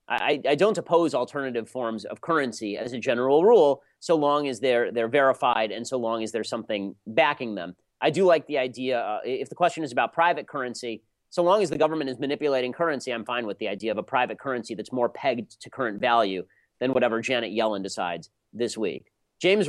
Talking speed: 215 wpm